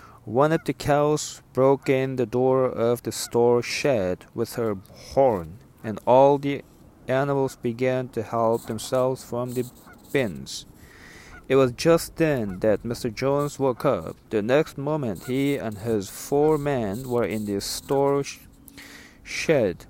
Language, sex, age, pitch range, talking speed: English, male, 40-59, 120-140 Hz, 145 wpm